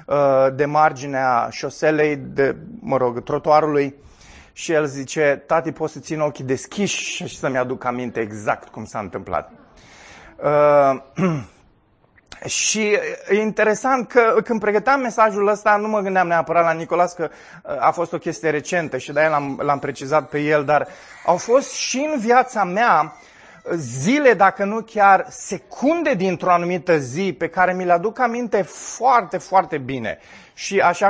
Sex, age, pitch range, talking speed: male, 30-49, 145-205 Hz, 150 wpm